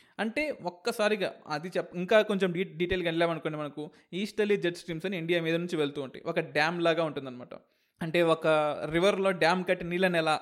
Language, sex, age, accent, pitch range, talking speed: Telugu, male, 20-39, native, 170-220 Hz, 175 wpm